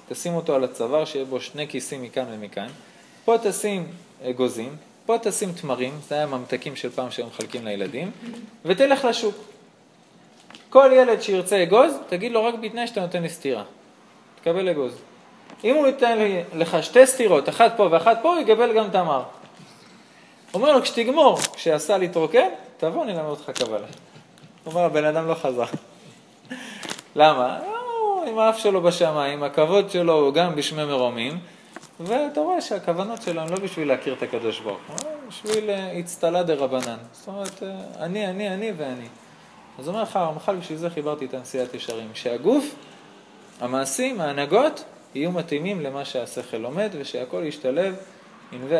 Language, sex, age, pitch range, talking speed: Hebrew, male, 20-39, 150-215 Hz, 155 wpm